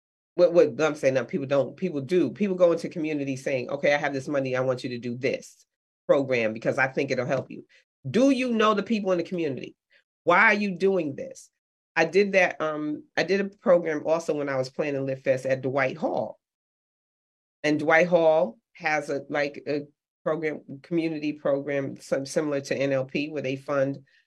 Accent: American